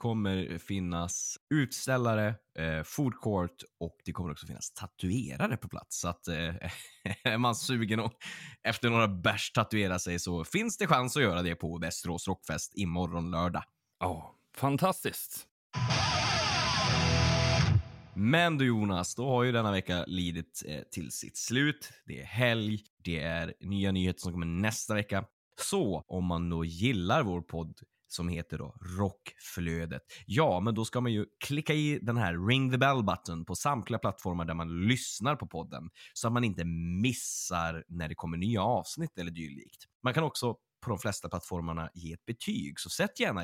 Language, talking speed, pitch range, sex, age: Swedish, 170 wpm, 85-120 Hz, male, 20-39